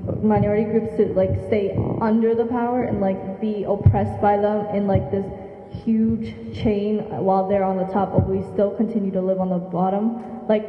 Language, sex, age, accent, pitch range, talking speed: English, male, 20-39, American, 200-230 Hz, 190 wpm